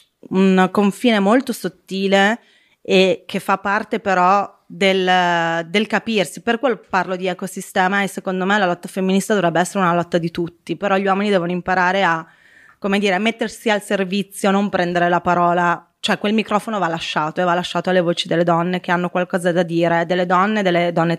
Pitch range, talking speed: 180-205 Hz, 185 wpm